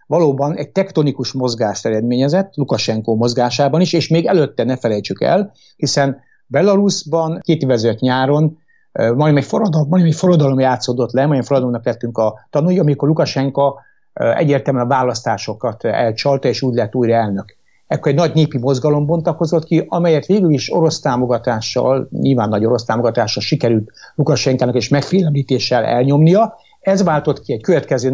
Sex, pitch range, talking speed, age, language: male, 120-155 Hz, 145 wpm, 60-79, Hungarian